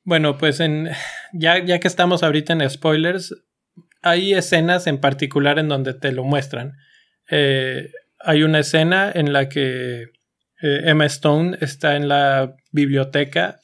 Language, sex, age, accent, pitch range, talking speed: Spanish, male, 20-39, Mexican, 135-160 Hz, 145 wpm